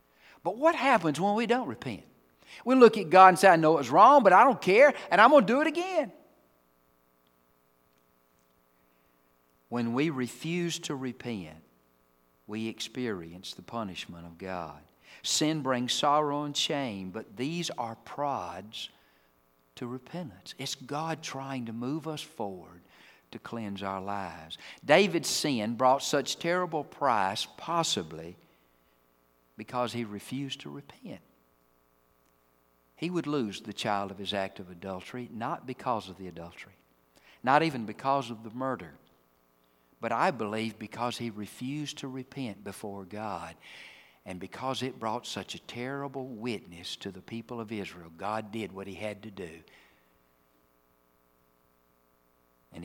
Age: 50-69